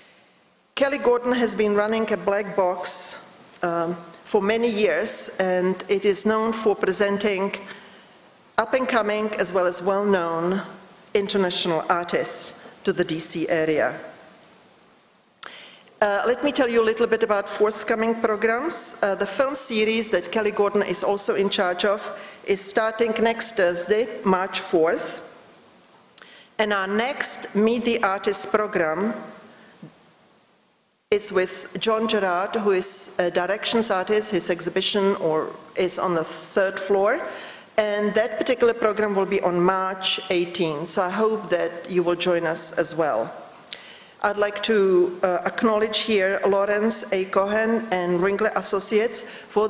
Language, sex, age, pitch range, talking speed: English, female, 50-69, 185-220 Hz, 140 wpm